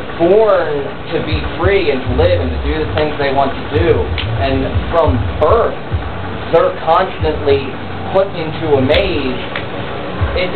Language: English